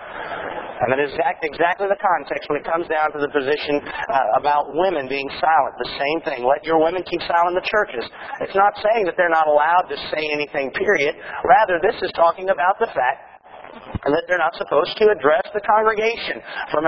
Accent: American